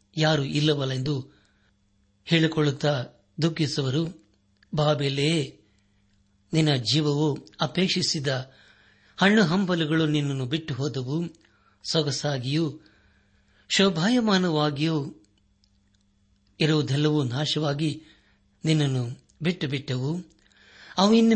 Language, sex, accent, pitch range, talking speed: Kannada, male, native, 105-160 Hz, 60 wpm